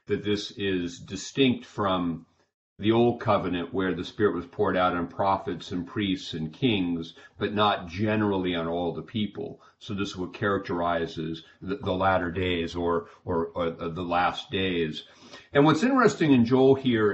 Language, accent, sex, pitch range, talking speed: English, American, male, 90-110 Hz, 170 wpm